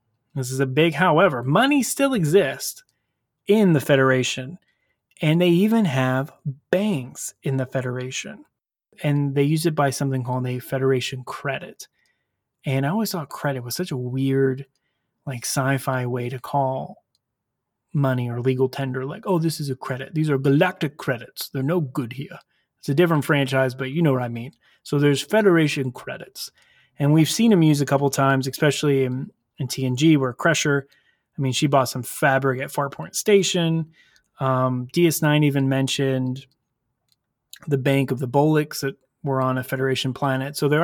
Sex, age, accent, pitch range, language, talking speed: male, 30-49, American, 130-150 Hz, English, 170 wpm